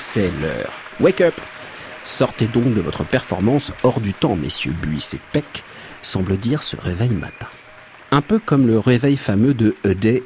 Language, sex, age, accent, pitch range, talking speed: French, male, 50-69, French, 100-130 Hz, 175 wpm